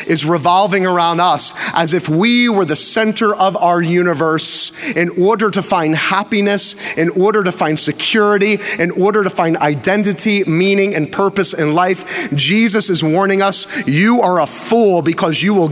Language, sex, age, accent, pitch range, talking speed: English, male, 30-49, American, 145-195 Hz, 170 wpm